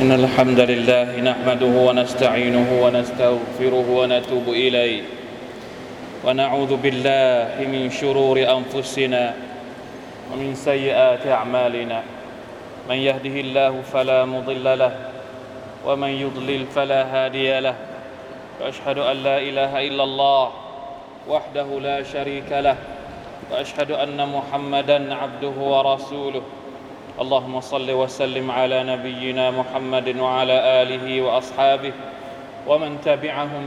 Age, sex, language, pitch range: 20-39, male, Thai, 130-140 Hz